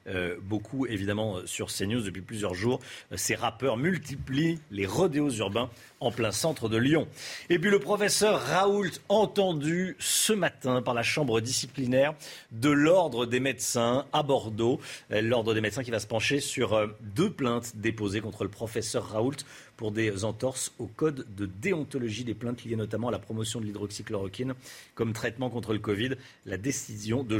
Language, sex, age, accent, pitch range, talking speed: French, male, 40-59, French, 110-150 Hz, 175 wpm